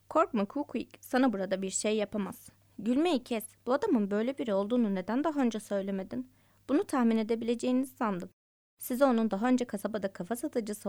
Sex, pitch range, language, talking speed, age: female, 200-260 Hz, Turkish, 165 wpm, 20-39